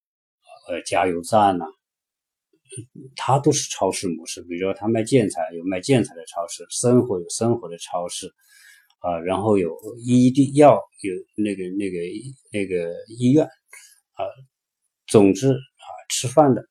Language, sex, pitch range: Chinese, male, 95-135 Hz